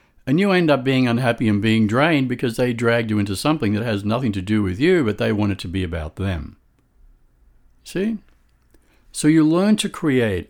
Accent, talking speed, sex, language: American, 205 wpm, male, English